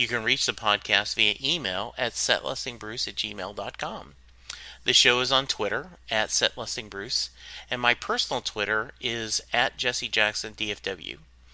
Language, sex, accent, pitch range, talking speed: English, male, American, 105-140 Hz, 130 wpm